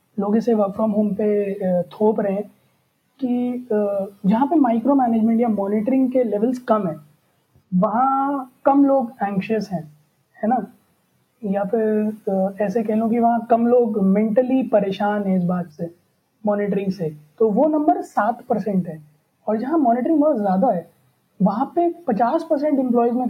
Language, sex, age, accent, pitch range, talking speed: Hindi, female, 20-39, native, 200-250 Hz, 155 wpm